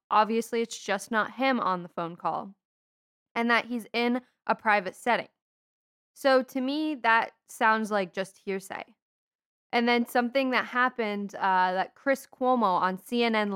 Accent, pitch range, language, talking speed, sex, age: American, 200-245 Hz, English, 155 wpm, female, 10-29